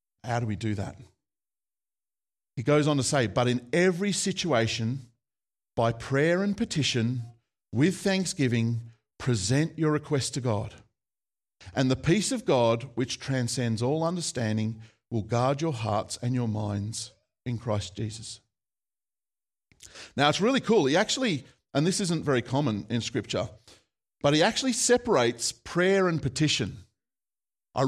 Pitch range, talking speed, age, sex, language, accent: 115-155 Hz, 140 wpm, 40-59, male, English, Australian